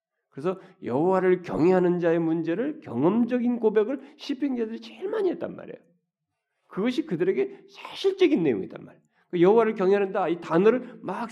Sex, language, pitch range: male, Korean, 200-290 Hz